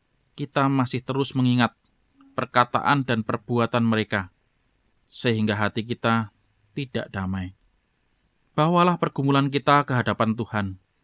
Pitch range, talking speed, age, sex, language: 110-135 Hz, 105 wpm, 20-39, male, Indonesian